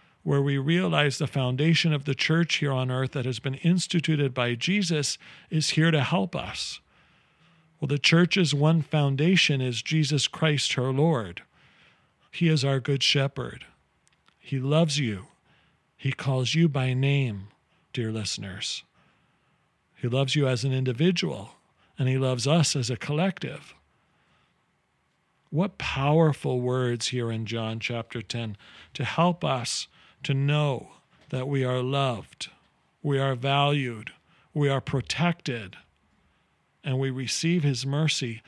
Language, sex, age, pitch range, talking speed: English, male, 50-69, 125-155 Hz, 135 wpm